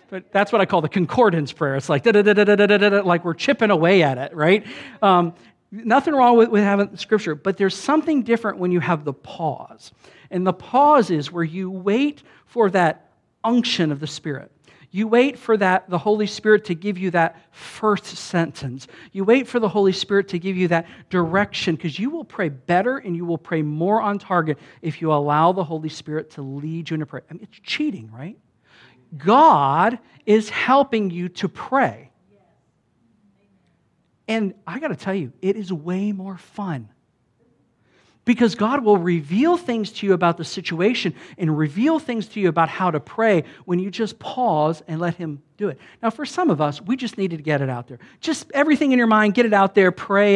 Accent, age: American, 50-69